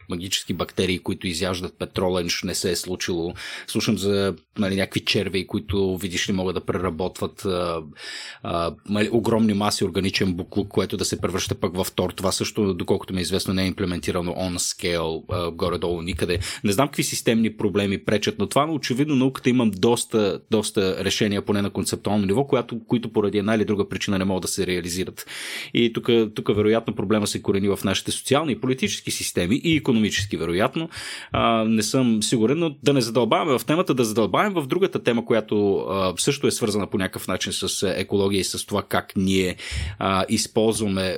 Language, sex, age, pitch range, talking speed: Bulgarian, male, 30-49, 95-125 Hz, 180 wpm